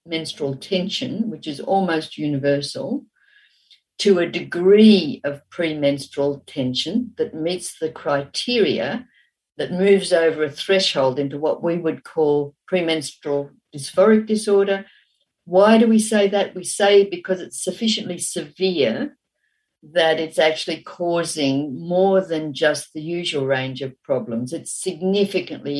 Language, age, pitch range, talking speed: English, 60-79, 140-190 Hz, 125 wpm